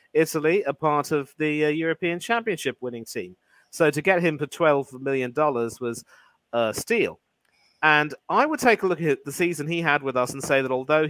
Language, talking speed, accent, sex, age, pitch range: English, 200 wpm, British, male, 40-59, 125-155 Hz